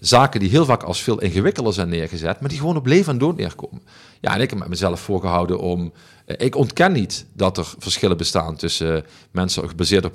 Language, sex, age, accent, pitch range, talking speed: Dutch, male, 50-69, Dutch, 90-115 Hz, 215 wpm